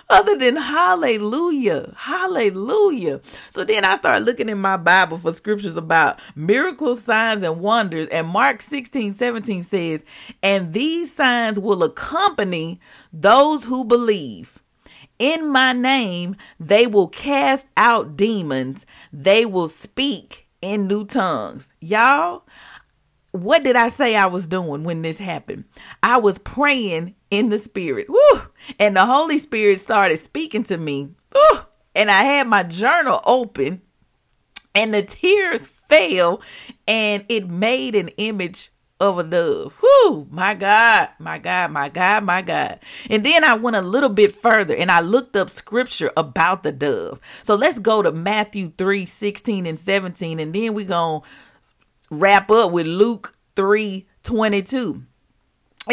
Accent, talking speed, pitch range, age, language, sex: American, 145 wpm, 185-250 Hz, 40-59, English, female